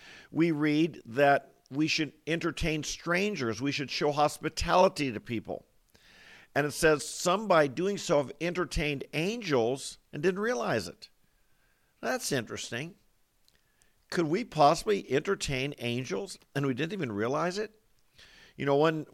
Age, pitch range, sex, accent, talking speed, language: 50-69, 125-160 Hz, male, American, 135 wpm, English